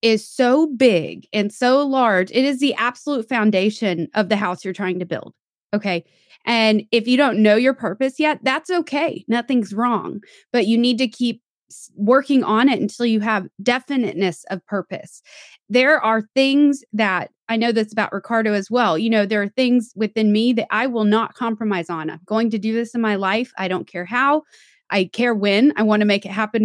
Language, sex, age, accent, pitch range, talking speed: English, female, 20-39, American, 190-240 Hz, 205 wpm